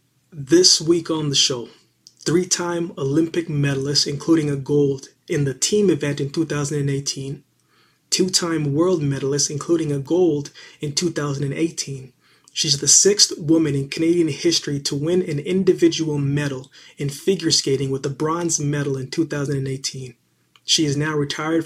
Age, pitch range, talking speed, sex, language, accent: 20-39, 140-165 Hz, 140 wpm, male, English, American